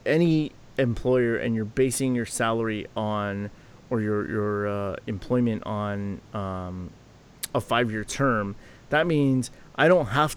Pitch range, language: 110-135 Hz, English